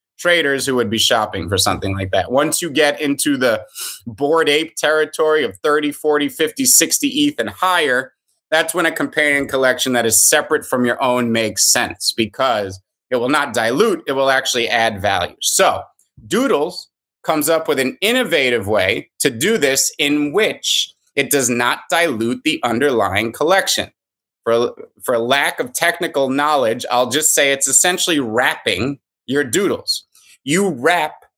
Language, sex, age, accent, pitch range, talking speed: English, male, 30-49, American, 125-170 Hz, 160 wpm